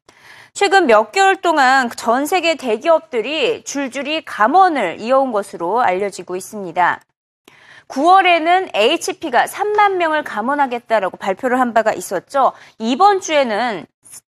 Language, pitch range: Korean, 220-330 Hz